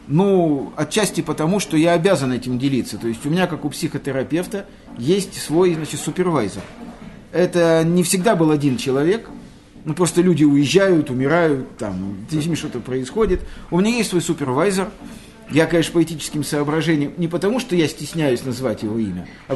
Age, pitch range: 50-69, 150-190 Hz